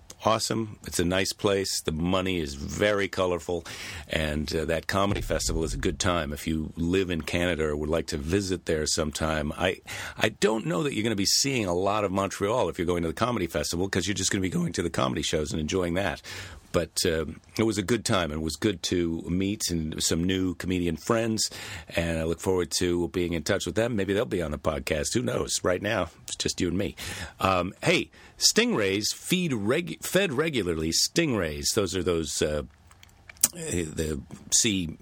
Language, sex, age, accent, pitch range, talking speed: English, male, 50-69, American, 80-105 Hz, 210 wpm